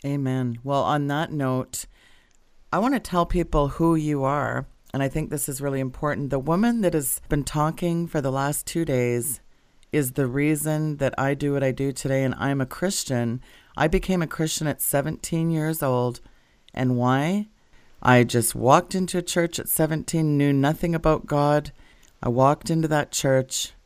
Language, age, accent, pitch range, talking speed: English, 30-49, American, 130-155 Hz, 180 wpm